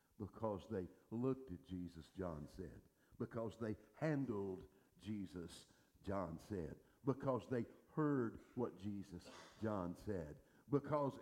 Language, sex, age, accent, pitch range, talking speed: English, male, 60-79, American, 110-145 Hz, 110 wpm